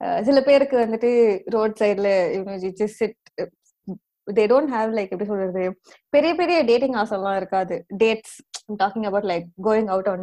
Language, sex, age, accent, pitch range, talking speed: Tamil, female, 20-39, native, 190-275 Hz, 180 wpm